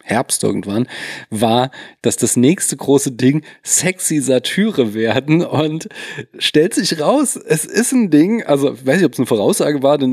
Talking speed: 170 wpm